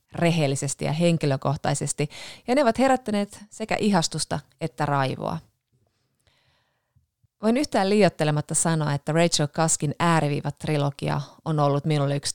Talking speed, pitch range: 110 wpm, 140-180 Hz